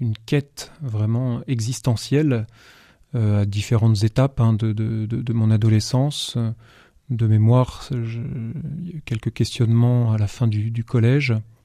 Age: 30-49